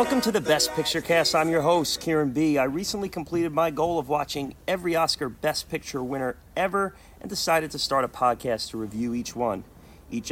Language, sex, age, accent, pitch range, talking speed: English, male, 30-49, American, 110-150 Hz, 205 wpm